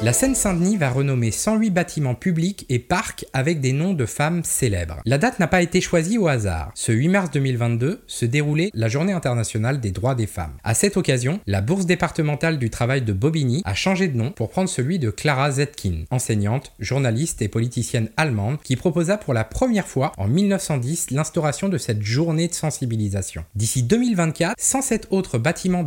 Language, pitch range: French, 115-180 Hz